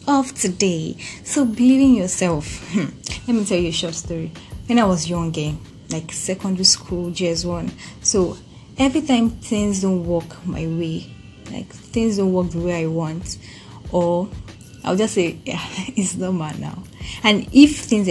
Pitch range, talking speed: 165-195 Hz, 160 wpm